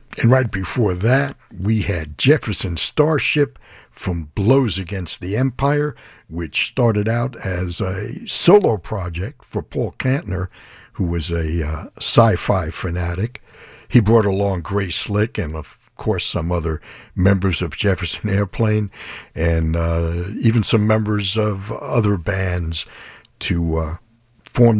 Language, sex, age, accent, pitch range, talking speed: English, male, 60-79, American, 90-120 Hz, 130 wpm